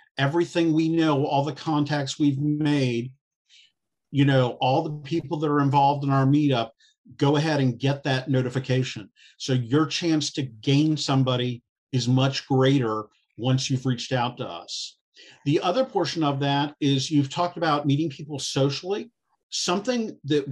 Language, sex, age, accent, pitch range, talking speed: English, male, 50-69, American, 135-175 Hz, 160 wpm